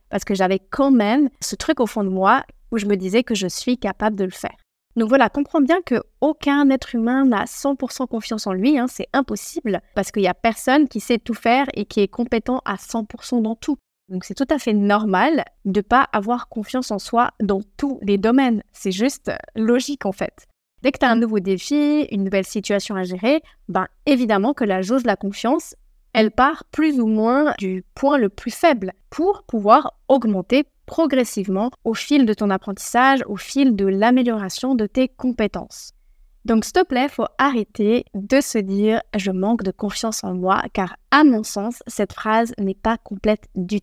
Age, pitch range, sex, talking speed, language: 30-49, 205-270 Hz, female, 205 wpm, French